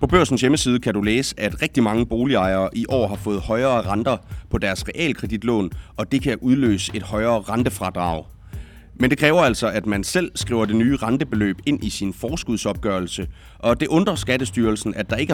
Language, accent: Danish, native